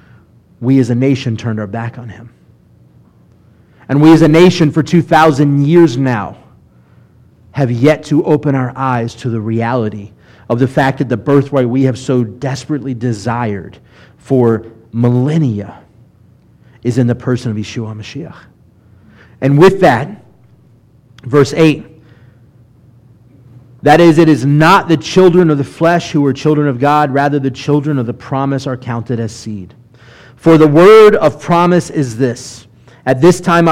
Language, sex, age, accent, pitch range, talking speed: English, male, 30-49, American, 120-155 Hz, 155 wpm